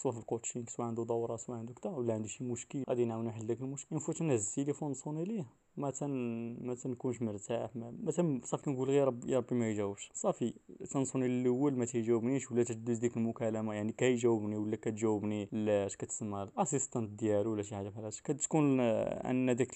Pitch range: 110-135 Hz